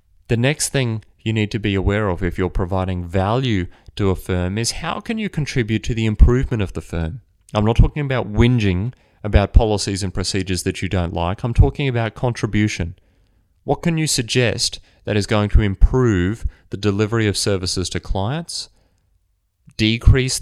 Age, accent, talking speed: 30-49, Australian, 175 wpm